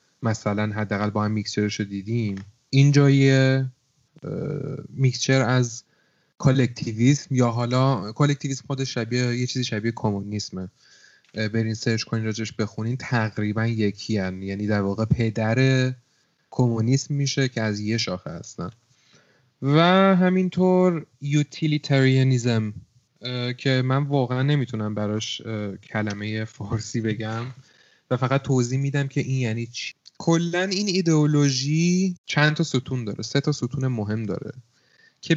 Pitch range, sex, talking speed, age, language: 110-140 Hz, male, 125 wpm, 30-49, Persian